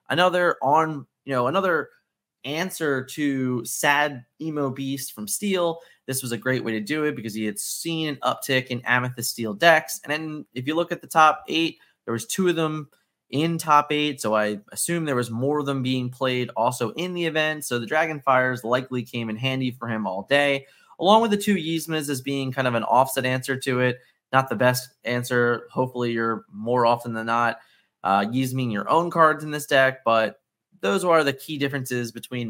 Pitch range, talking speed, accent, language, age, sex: 120-155 Hz, 210 wpm, American, English, 20-39, male